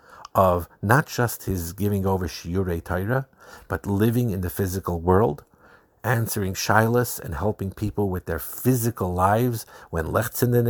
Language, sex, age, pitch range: English, male, 50-69, 90-115 Hz